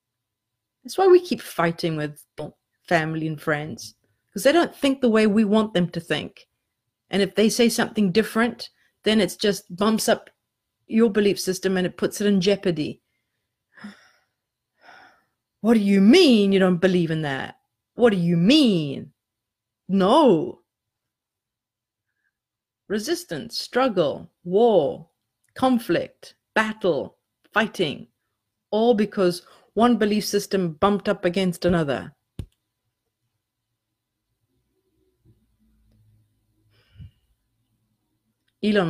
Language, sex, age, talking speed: English, female, 30-49, 110 wpm